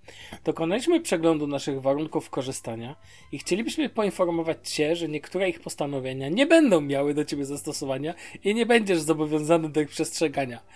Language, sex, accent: Polish, male, native